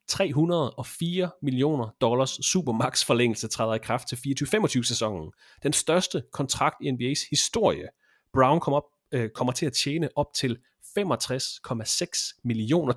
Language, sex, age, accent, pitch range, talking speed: Danish, male, 30-49, native, 115-155 Hz, 135 wpm